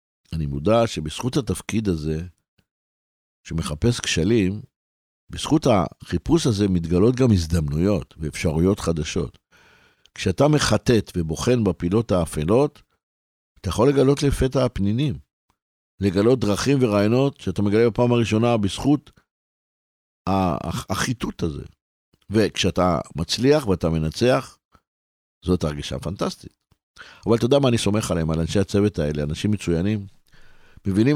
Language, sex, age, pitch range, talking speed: Hebrew, male, 60-79, 85-125 Hz, 110 wpm